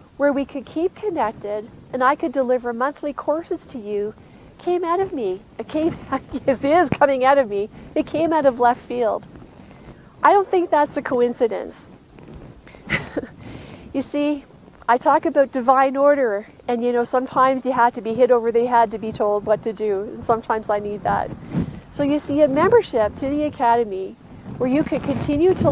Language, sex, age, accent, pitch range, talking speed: English, female, 40-59, American, 235-295 Hz, 185 wpm